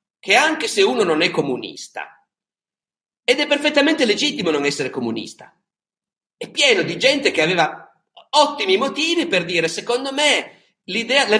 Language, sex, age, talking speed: Italian, male, 50-69, 140 wpm